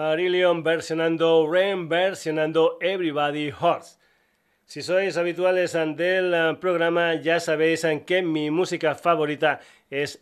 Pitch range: 145-165 Hz